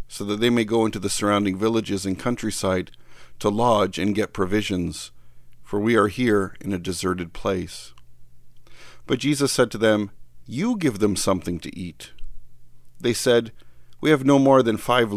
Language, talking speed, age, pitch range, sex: English, 170 wpm, 50-69, 85-115 Hz, male